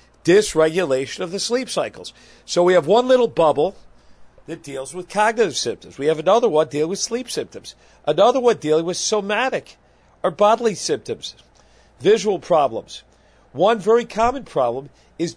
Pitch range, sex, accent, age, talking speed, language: 135-200 Hz, male, American, 50-69, 150 wpm, English